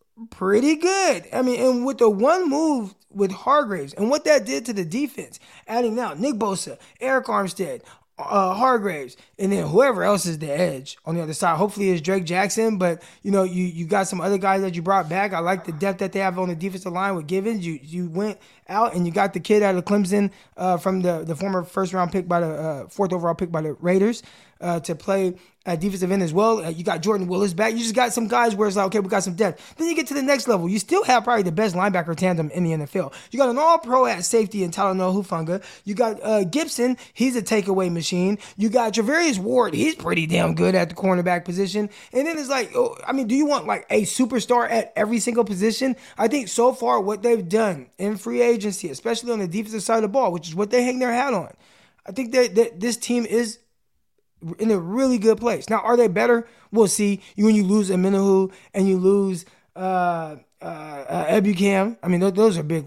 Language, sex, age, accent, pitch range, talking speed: English, male, 20-39, American, 185-235 Hz, 240 wpm